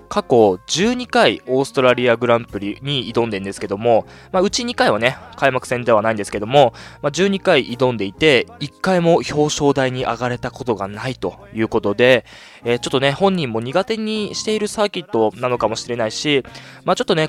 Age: 20-39